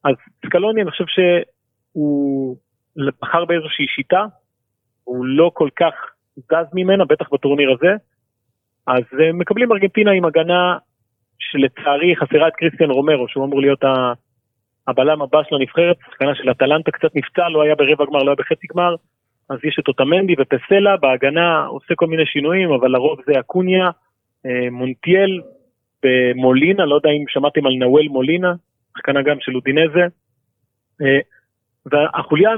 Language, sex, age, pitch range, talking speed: Hebrew, male, 30-49, 130-175 Hz, 140 wpm